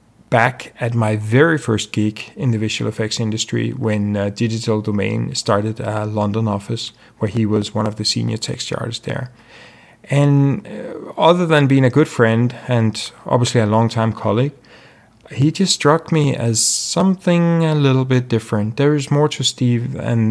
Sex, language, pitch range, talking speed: male, English, 110-130 Hz, 170 wpm